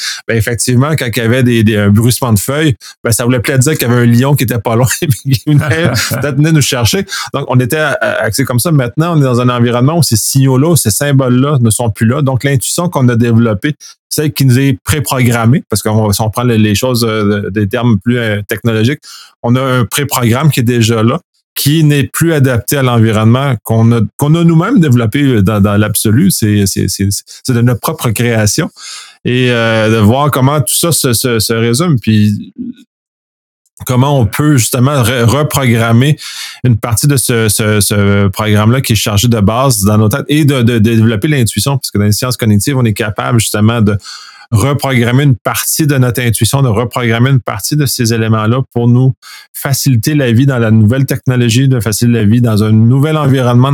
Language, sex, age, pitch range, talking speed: French, male, 30-49, 115-135 Hz, 205 wpm